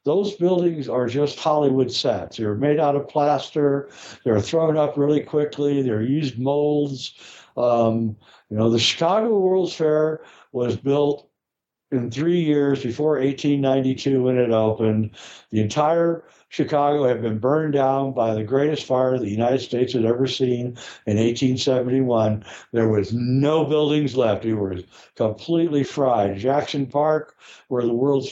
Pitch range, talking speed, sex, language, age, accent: 120-150 Hz, 145 wpm, male, English, 60-79, American